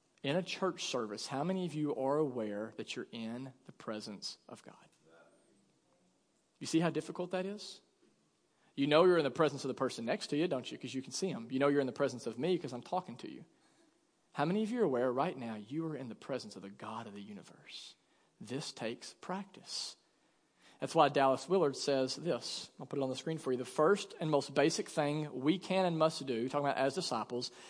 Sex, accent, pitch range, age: male, American, 140-190 Hz, 40-59